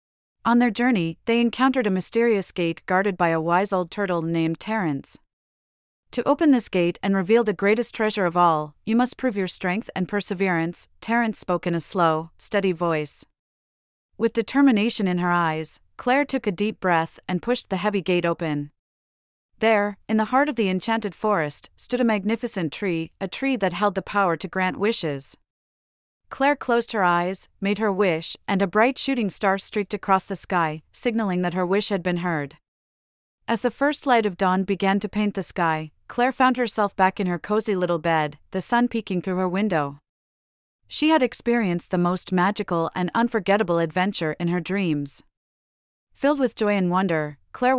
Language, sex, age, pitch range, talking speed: English, female, 40-59, 170-220 Hz, 180 wpm